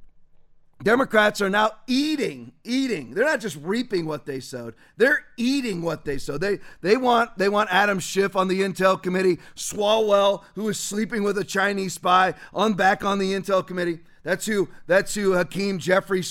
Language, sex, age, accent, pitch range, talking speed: English, male, 40-59, American, 180-220 Hz, 175 wpm